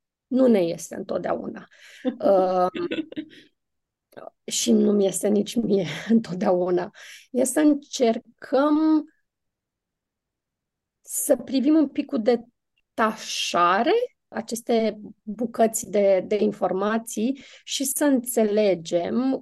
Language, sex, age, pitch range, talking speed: Romanian, female, 20-39, 210-275 Hz, 90 wpm